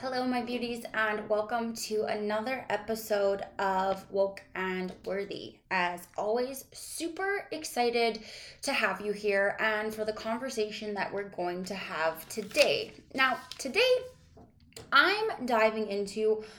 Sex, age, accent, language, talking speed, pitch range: female, 20-39, American, English, 125 wpm, 210-270 Hz